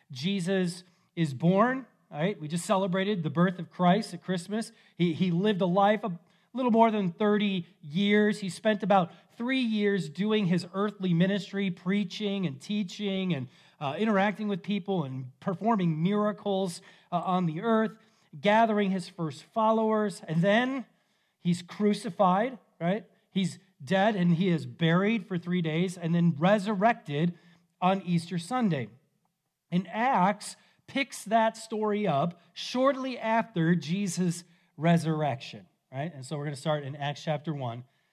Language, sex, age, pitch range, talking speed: English, male, 40-59, 160-205 Hz, 150 wpm